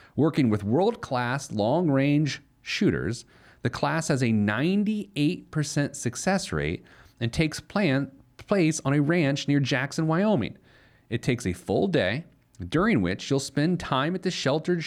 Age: 40-59